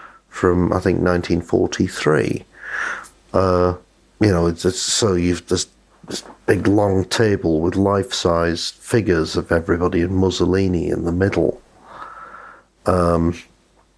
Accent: British